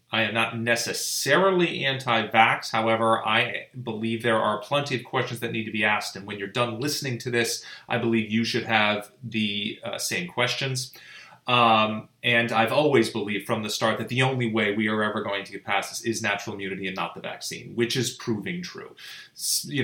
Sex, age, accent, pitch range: male, 30-49, American, 110-125 Hz